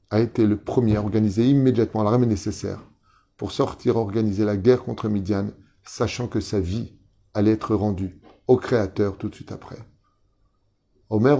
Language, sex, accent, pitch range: French, male, French, 100-130 Hz